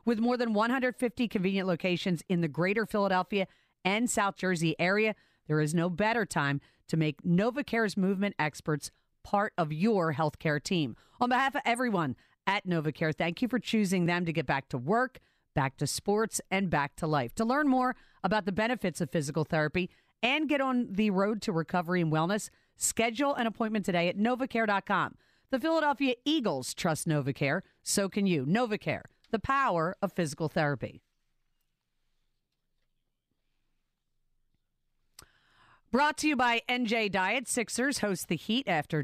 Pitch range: 155-225 Hz